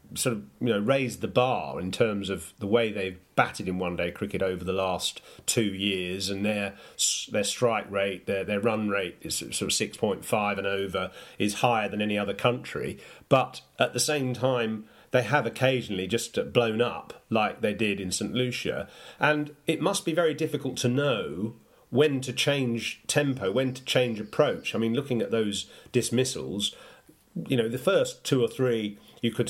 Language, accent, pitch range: English, British, 105-130 Hz